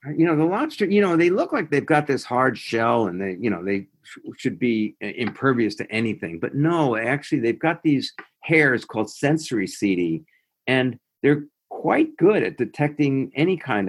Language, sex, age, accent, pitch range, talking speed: English, male, 50-69, American, 105-145 Hz, 190 wpm